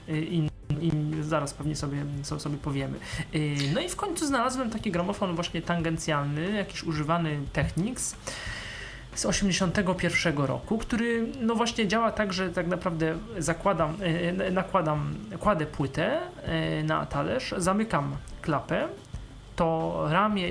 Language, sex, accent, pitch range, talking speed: Polish, male, native, 150-195 Hz, 115 wpm